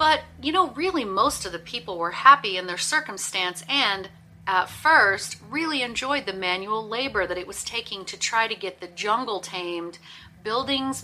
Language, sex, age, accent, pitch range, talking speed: English, female, 40-59, American, 180-245 Hz, 180 wpm